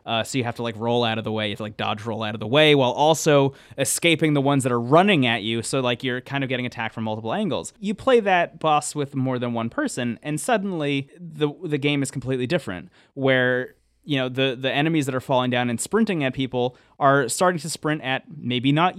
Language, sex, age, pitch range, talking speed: English, male, 20-39, 120-145 Hz, 250 wpm